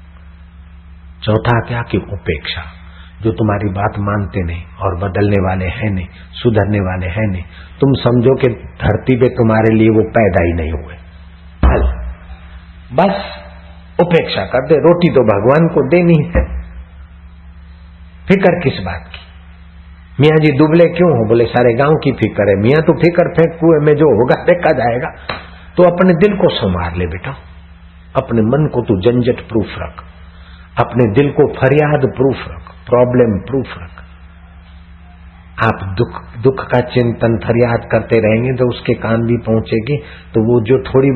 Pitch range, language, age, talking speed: 85-125 Hz, Hindi, 60-79, 155 wpm